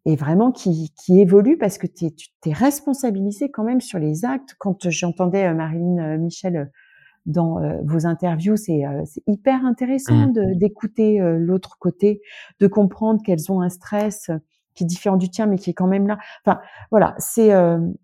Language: French